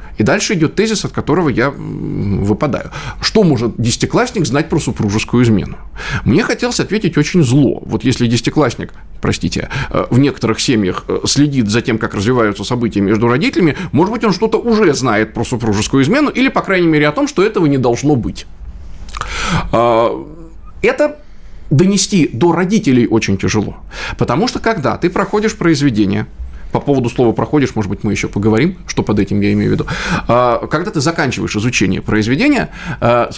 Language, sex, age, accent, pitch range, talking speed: Russian, male, 20-39, native, 110-165 Hz, 160 wpm